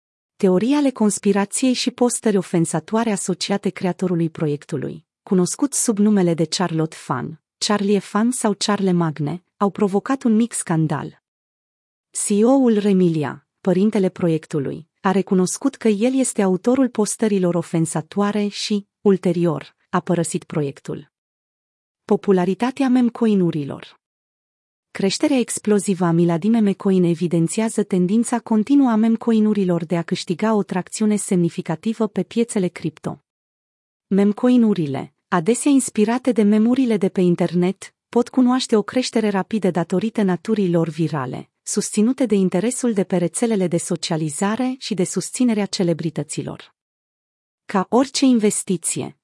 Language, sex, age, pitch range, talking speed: Romanian, female, 30-49, 175-225 Hz, 115 wpm